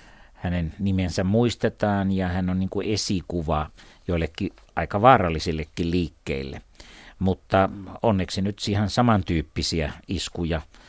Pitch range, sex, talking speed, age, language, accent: 90-110 Hz, male, 95 wpm, 60-79, Finnish, native